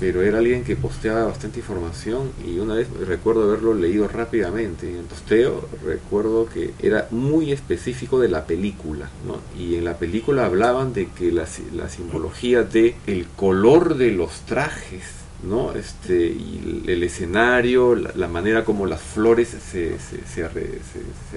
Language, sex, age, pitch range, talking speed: Spanish, male, 40-59, 90-120 Hz, 165 wpm